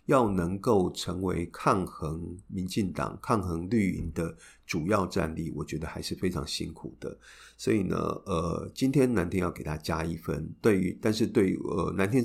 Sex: male